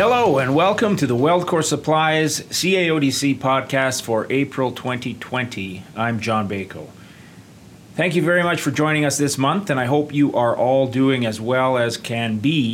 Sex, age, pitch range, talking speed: male, 30-49, 110-135 Hz, 170 wpm